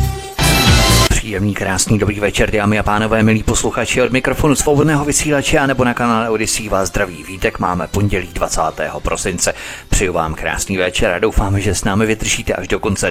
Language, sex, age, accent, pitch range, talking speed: Czech, male, 30-49, native, 95-120 Hz, 175 wpm